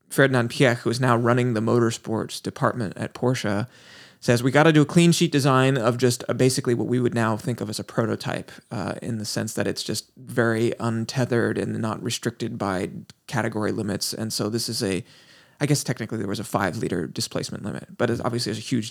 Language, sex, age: English, male, 20-39